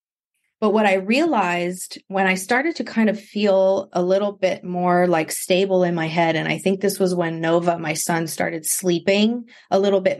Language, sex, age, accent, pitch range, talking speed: English, female, 30-49, American, 180-225 Hz, 200 wpm